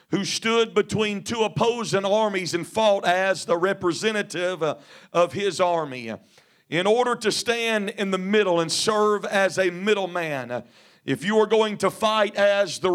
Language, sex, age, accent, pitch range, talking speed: English, male, 50-69, American, 185-220 Hz, 160 wpm